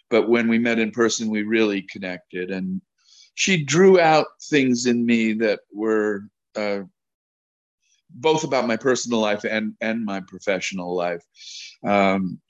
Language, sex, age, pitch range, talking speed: English, male, 50-69, 100-120 Hz, 145 wpm